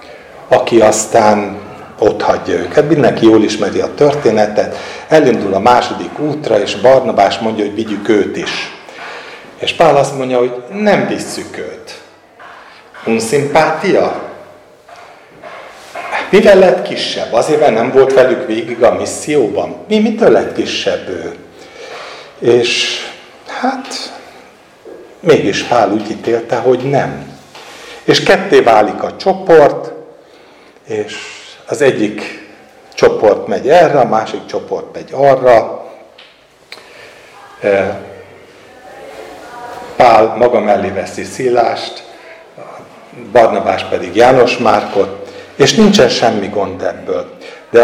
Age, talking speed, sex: 60-79, 105 wpm, male